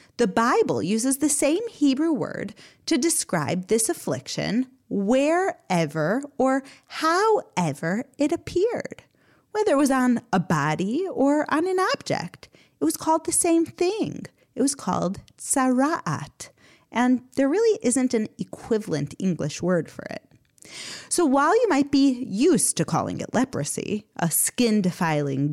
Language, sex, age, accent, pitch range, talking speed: English, female, 30-49, American, 195-295 Hz, 135 wpm